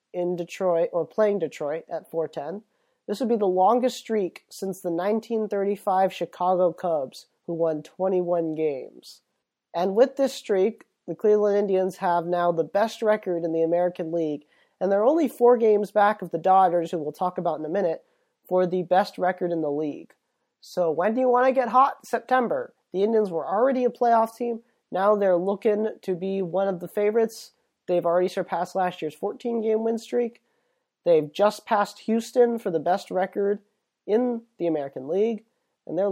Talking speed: 180 wpm